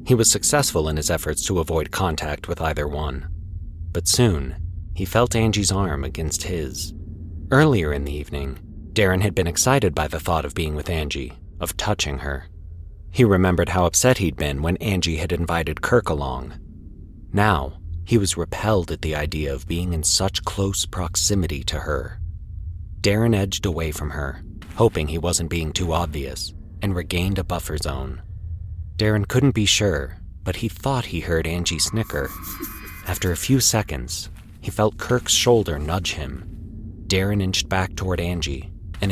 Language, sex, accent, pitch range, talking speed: English, male, American, 80-100 Hz, 165 wpm